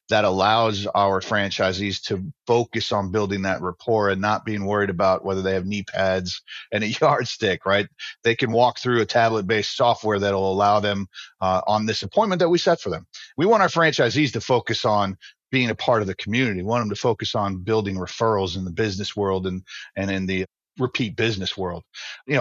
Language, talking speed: English, 205 wpm